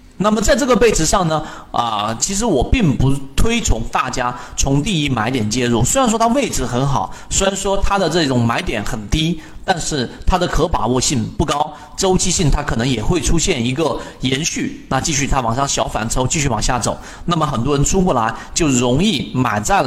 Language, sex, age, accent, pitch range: Chinese, male, 30-49, native, 120-170 Hz